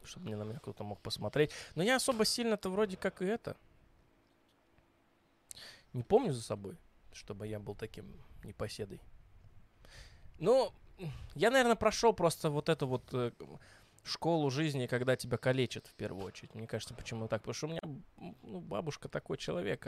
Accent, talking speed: native, 155 wpm